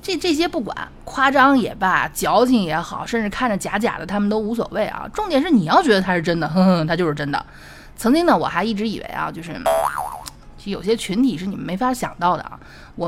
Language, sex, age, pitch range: Chinese, female, 20-39, 165-235 Hz